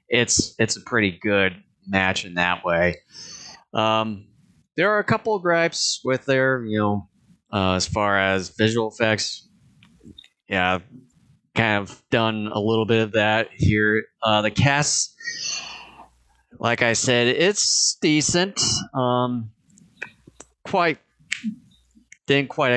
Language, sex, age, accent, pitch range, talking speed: English, male, 30-49, American, 100-120 Hz, 125 wpm